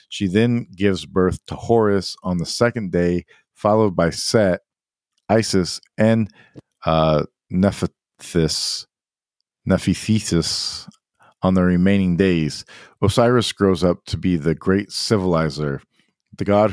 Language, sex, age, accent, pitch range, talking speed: English, male, 50-69, American, 85-100 Hz, 110 wpm